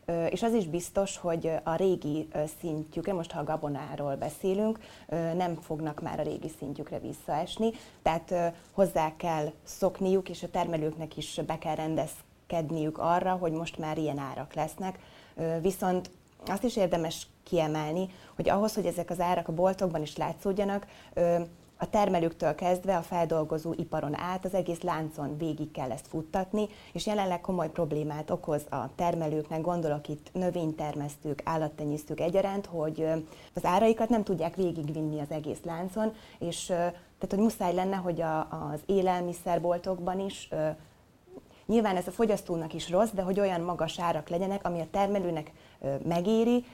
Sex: female